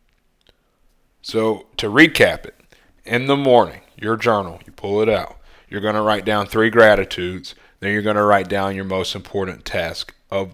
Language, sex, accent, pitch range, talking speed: English, male, American, 95-115 Hz, 175 wpm